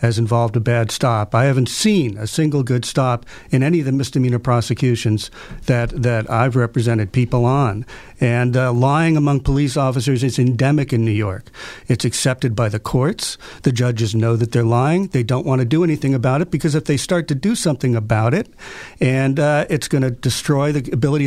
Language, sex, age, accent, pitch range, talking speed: English, male, 50-69, American, 125-155 Hz, 200 wpm